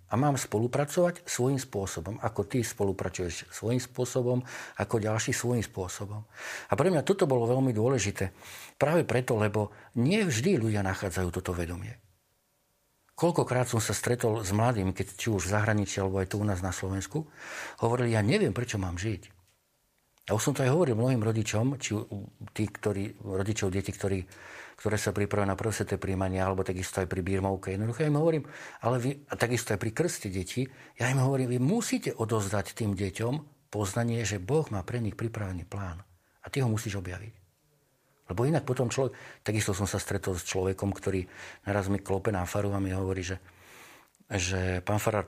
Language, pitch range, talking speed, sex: Slovak, 95-125 Hz, 175 wpm, male